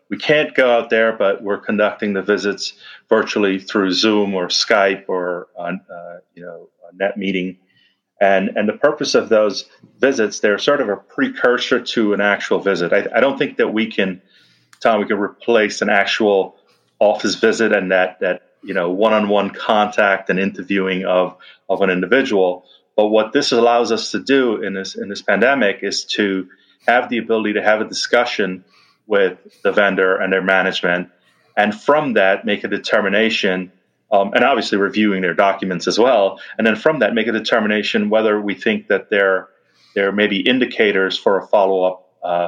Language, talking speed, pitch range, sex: English, 180 wpm, 95-110 Hz, male